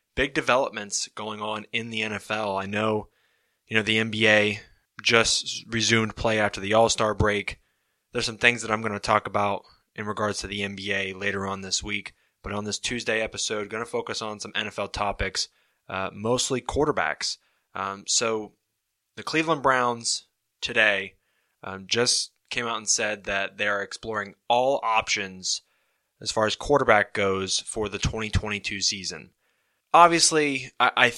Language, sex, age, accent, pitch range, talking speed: English, male, 20-39, American, 100-115 Hz, 160 wpm